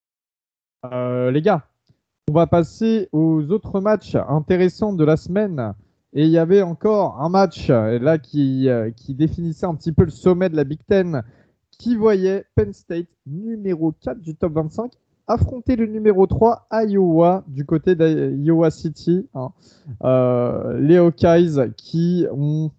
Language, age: French, 20-39